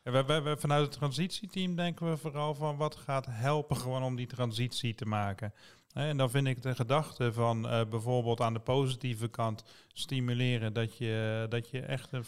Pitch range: 115-140 Hz